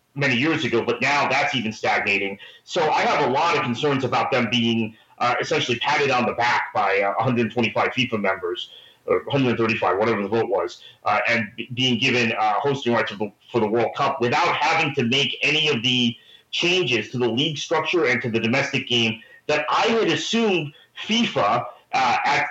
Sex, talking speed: male, 190 wpm